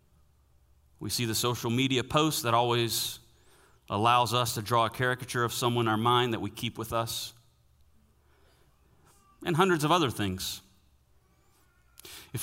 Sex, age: male, 40-59